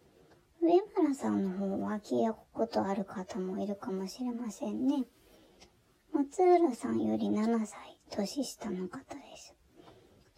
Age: 20-39